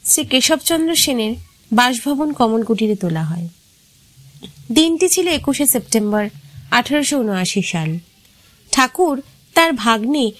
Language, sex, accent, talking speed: Bengali, female, native, 100 wpm